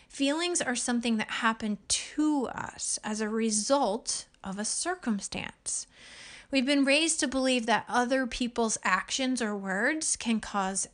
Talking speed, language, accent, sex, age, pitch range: 145 wpm, English, American, female, 30-49, 215-275 Hz